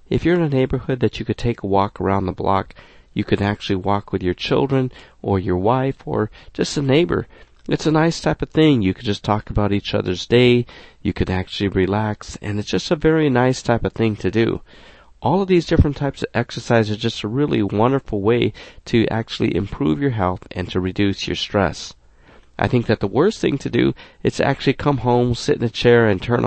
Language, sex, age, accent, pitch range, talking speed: English, male, 40-59, American, 100-130 Hz, 220 wpm